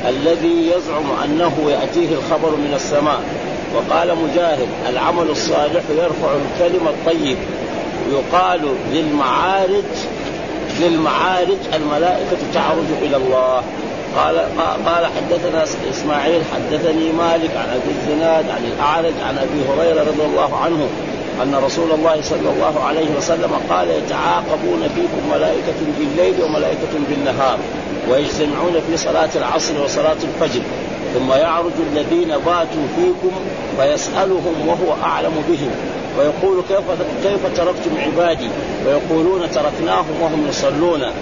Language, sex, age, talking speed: Arabic, male, 50-69, 110 wpm